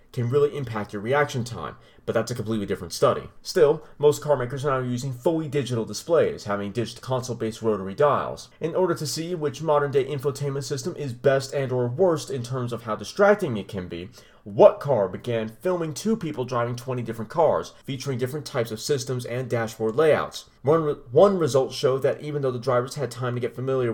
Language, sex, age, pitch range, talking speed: English, male, 30-49, 115-150 Hz, 200 wpm